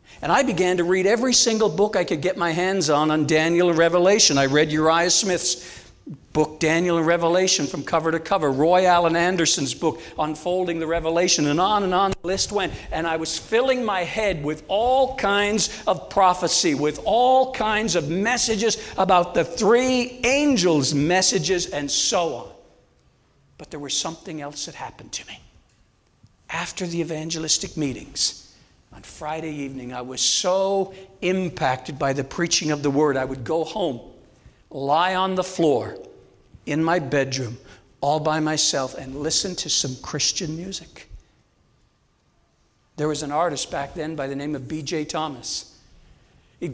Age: 60-79